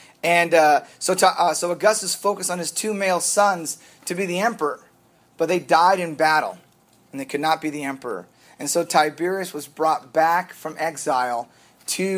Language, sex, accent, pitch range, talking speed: English, male, American, 160-210 Hz, 185 wpm